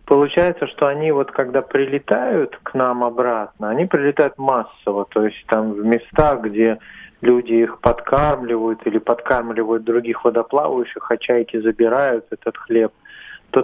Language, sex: Russian, male